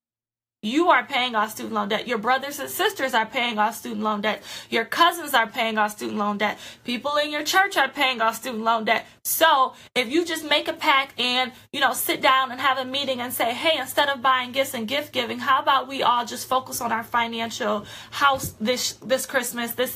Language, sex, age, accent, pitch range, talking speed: English, female, 20-39, American, 235-290 Hz, 225 wpm